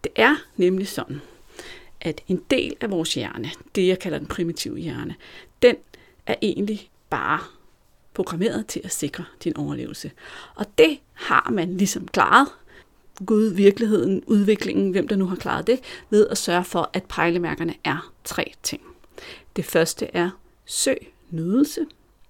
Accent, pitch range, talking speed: native, 175-235 Hz, 145 wpm